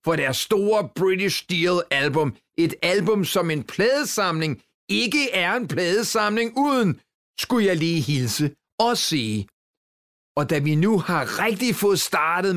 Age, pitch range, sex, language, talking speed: 40-59, 155-210 Hz, male, Danish, 140 wpm